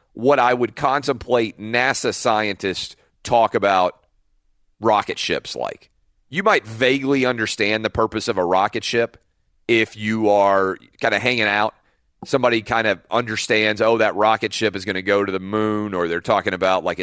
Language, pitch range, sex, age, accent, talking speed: English, 105-130 Hz, male, 40-59, American, 170 wpm